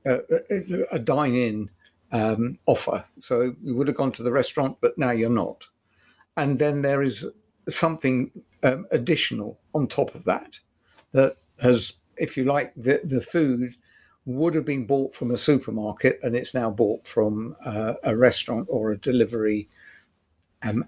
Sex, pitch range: male, 110-140 Hz